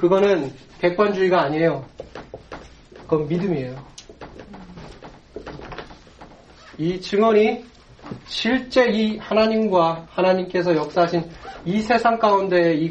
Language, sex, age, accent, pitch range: Korean, male, 30-49, native, 145-185 Hz